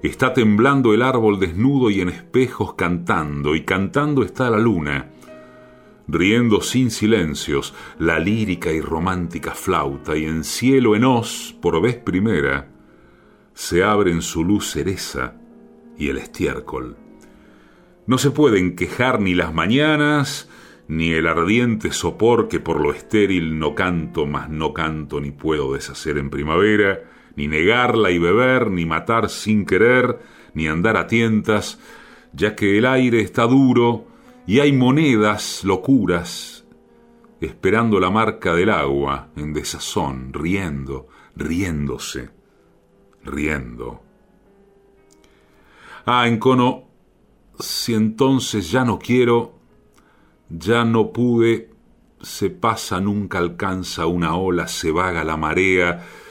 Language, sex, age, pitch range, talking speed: Spanish, male, 40-59, 80-115 Hz, 125 wpm